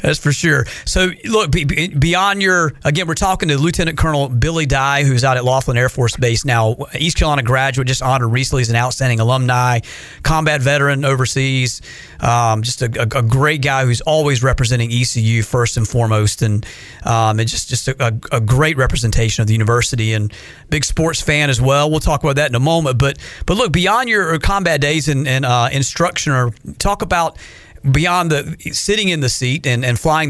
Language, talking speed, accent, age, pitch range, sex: English, 195 wpm, American, 40-59, 120-155 Hz, male